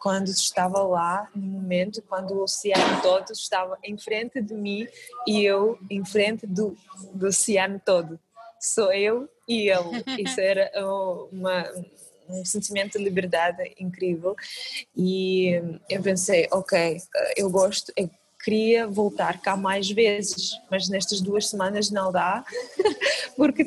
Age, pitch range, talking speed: 20-39, 180-210 Hz, 130 wpm